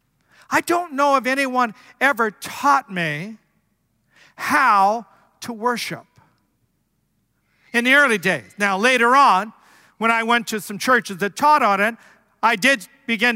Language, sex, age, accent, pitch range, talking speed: English, male, 50-69, American, 210-270 Hz, 140 wpm